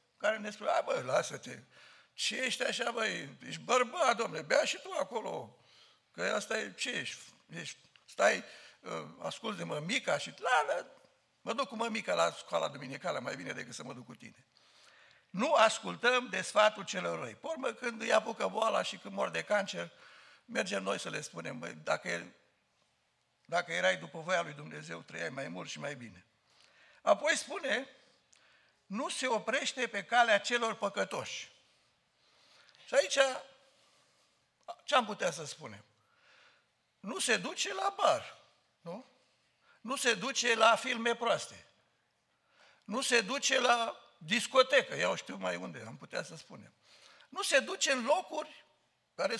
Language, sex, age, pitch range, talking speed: Romanian, male, 60-79, 215-275 Hz, 155 wpm